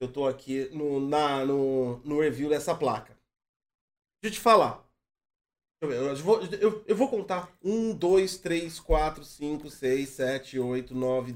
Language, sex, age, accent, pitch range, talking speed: Portuguese, male, 20-39, Brazilian, 140-230 Hz, 155 wpm